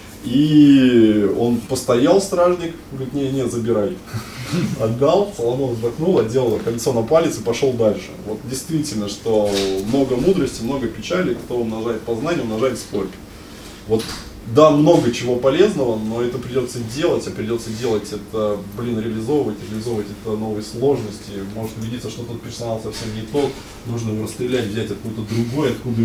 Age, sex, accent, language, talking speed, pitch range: 20-39, male, native, Russian, 150 wpm, 110-140 Hz